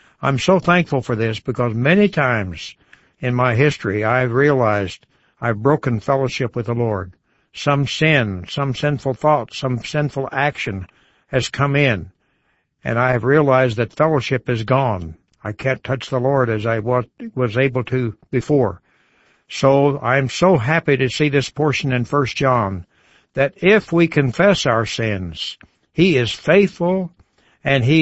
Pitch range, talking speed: 120-150 Hz, 150 wpm